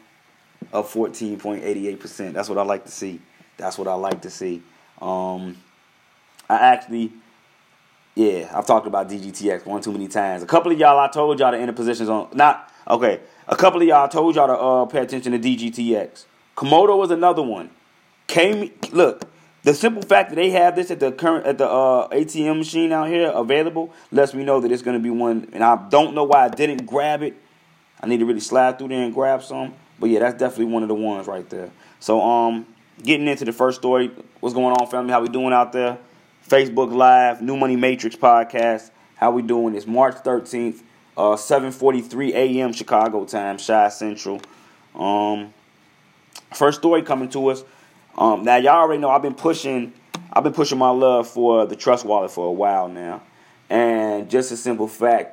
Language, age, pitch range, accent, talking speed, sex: English, 30-49, 110-140 Hz, American, 205 wpm, male